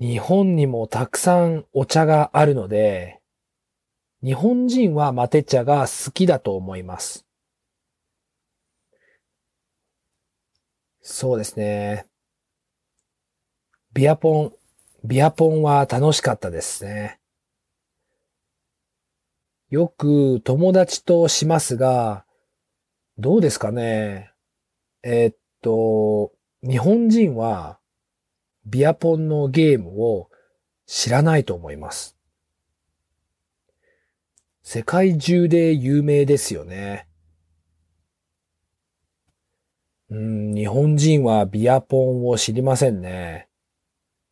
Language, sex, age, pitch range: English, male, 40-59, 90-150 Hz